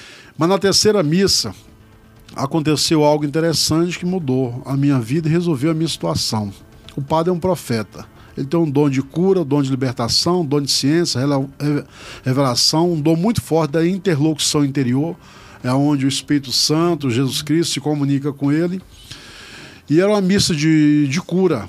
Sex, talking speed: male, 170 wpm